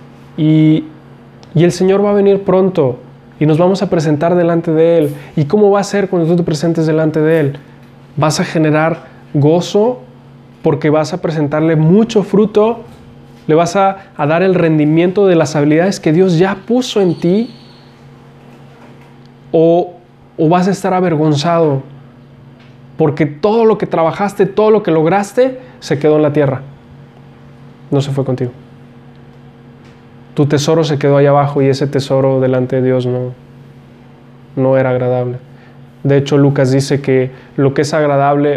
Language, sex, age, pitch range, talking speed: Spanish, male, 20-39, 125-160 Hz, 160 wpm